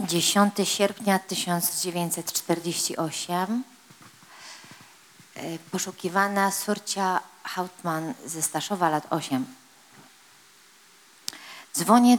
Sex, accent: female, native